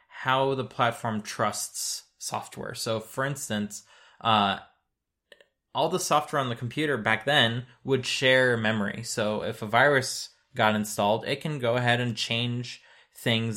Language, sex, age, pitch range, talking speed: English, male, 20-39, 105-125 Hz, 145 wpm